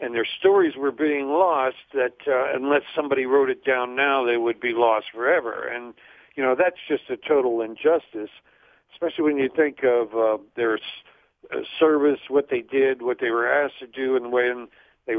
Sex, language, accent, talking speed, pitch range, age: male, English, American, 195 wpm, 110-150 Hz, 60-79